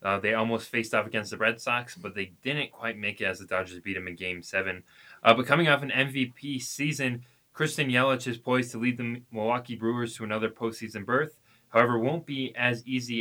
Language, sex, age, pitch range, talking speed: English, male, 20-39, 105-125 Hz, 225 wpm